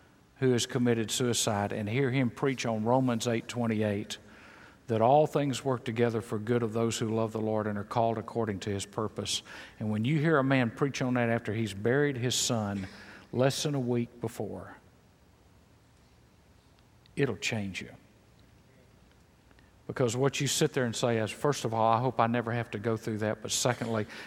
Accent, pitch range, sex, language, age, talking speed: American, 110-135 Hz, male, English, 50-69, 190 wpm